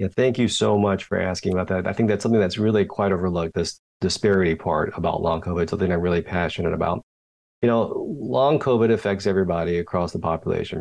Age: 30-49